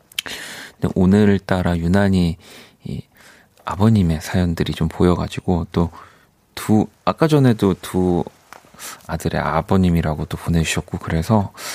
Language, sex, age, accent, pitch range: Korean, male, 40-59, native, 85-115 Hz